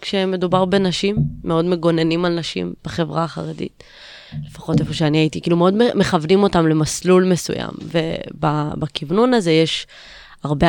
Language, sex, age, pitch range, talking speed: Hebrew, female, 20-39, 155-180 Hz, 130 wpm